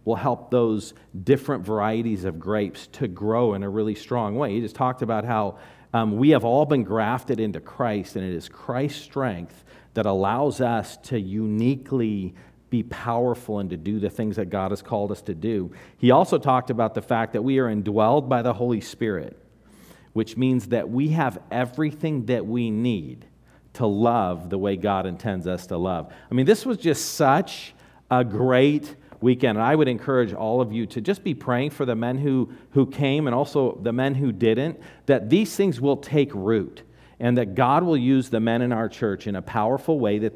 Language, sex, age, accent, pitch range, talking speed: English, male, 40-59, American, 105-135 Hz, 200 wpm